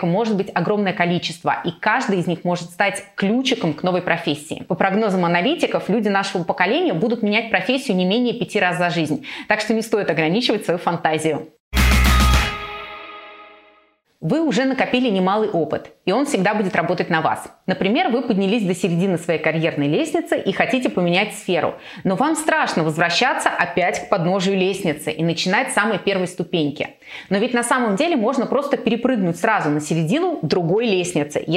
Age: 20-39